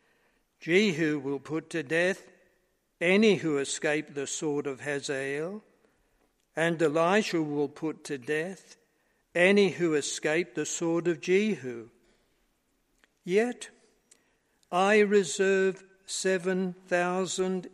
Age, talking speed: 60-79, 100 wpm